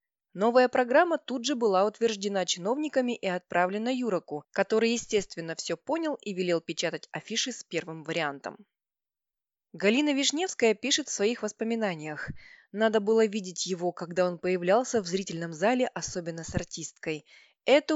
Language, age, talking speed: Russian, 20-39, 135 wpm